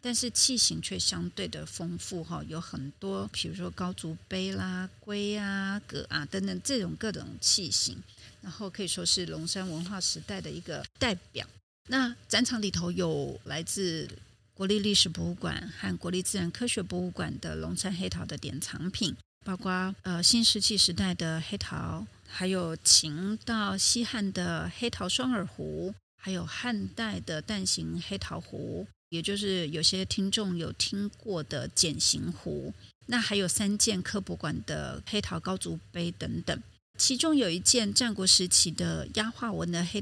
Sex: female